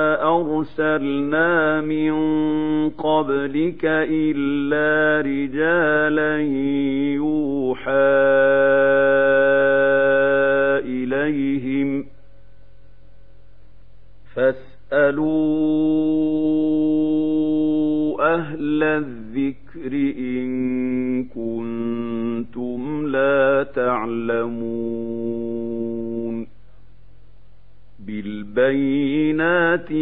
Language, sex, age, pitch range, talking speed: Arabic, male, 50-69, 125-155 Hz, 30 wpm